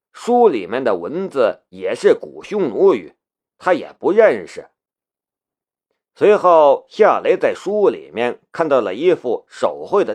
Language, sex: Chinese, male